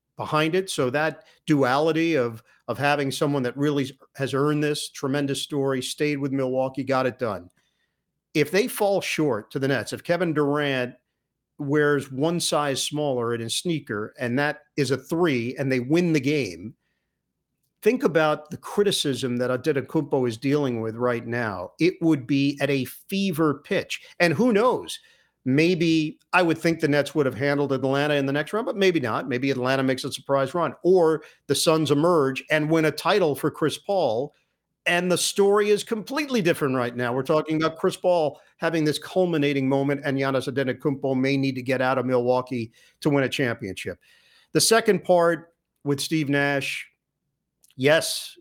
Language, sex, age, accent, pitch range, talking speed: English, male, 50-69, American, 135-165 Hz, 175 wpm